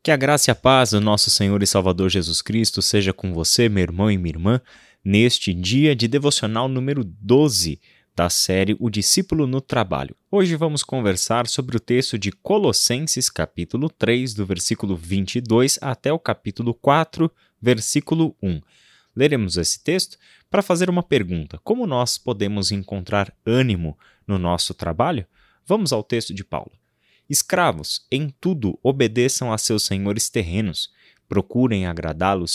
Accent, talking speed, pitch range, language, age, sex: Brazilian, 150 wpm, 95-135 Hz, Portuguese, 20-39, male